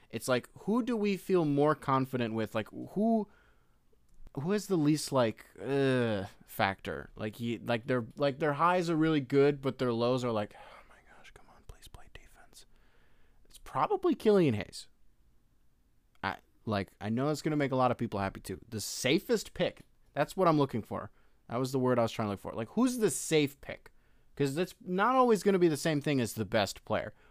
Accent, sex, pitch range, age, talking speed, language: American, male, 105-150 Hz, 20-39, 205 wpm, English